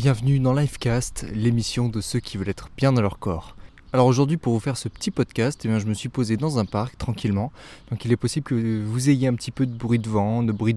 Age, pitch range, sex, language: 20-39, 110-140 Hz, male, French